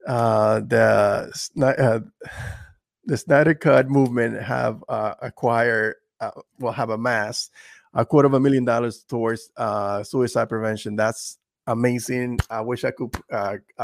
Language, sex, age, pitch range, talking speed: English, male, 20-39, 115-130 Hz, 140 wpm